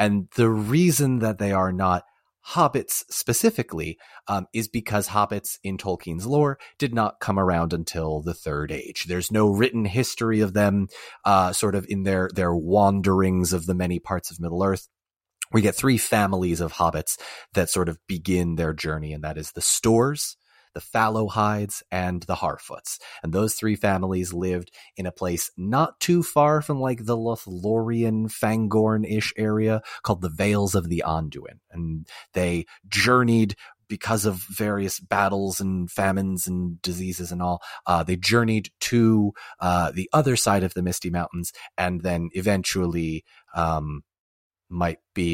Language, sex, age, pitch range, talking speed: English, male, 30-49, 90-110 Hz, 160 wpm